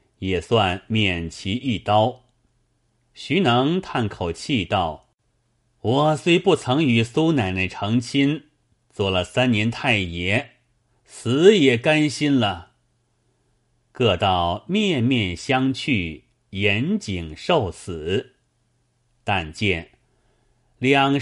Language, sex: Chinese, male